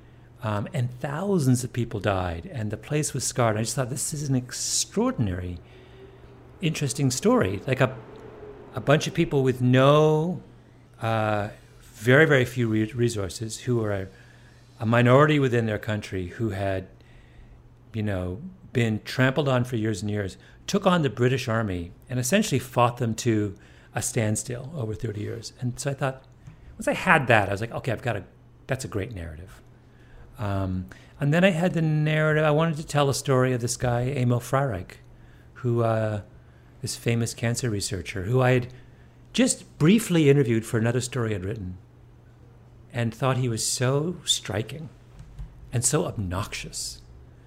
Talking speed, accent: 165 wpm, American